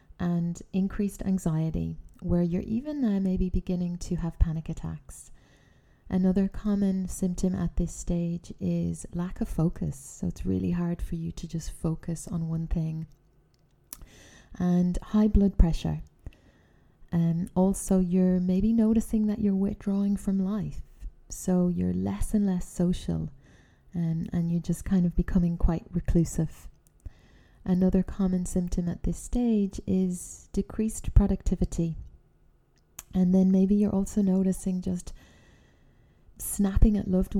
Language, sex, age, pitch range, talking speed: English, female, 20-39, 165-195 Hz, 135 wpm